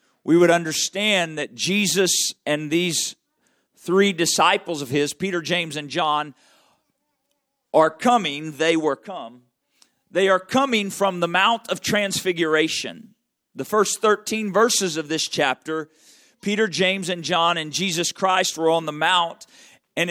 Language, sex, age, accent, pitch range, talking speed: English, male, 40-59, American, 165-215 Hz, 140 wpm